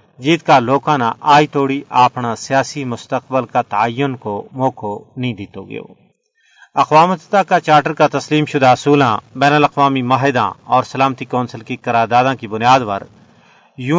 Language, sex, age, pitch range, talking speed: Urdu, male, 40-59, 125-150 Hz, 145 wpm